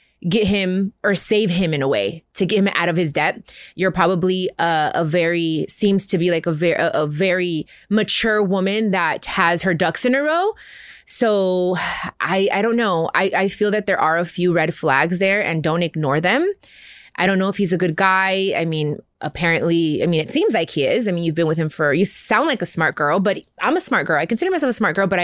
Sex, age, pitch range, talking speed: female, 20-39, 165-195 Hz, 240 wpm